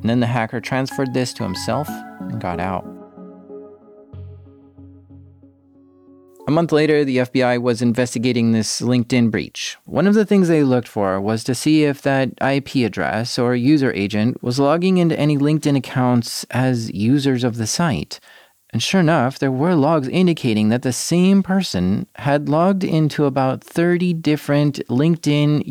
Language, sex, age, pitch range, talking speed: English, male, 30-49, 120-150 Hz, 155 wpm